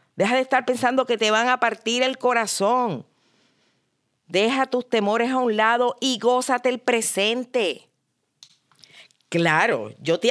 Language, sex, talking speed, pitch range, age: Spanish, female, 140 wpm, 170-235 Hz, 50-69